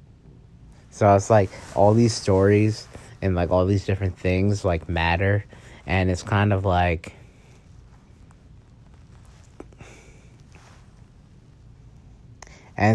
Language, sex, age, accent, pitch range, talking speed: English, male, 30-49, American, 95-110 Hz, 95 wpm